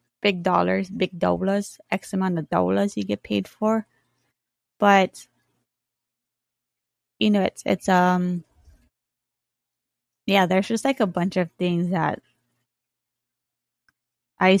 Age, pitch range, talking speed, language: 20-39, 140-200 Hz, 115 wpm, English